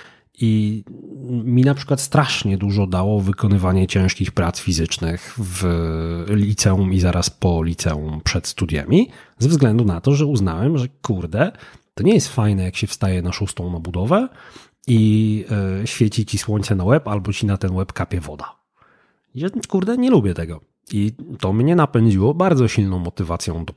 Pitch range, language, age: 90-120 Hz, Polish, 30-49